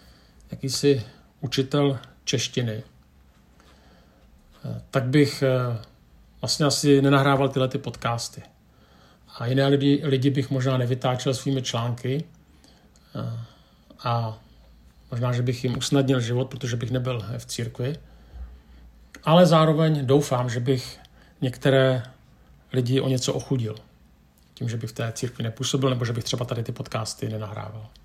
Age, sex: 50-69, male